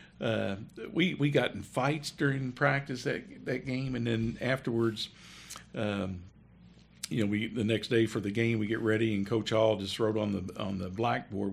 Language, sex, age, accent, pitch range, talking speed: English, male, 50-69, American, 105-115 Hz, 195 wpm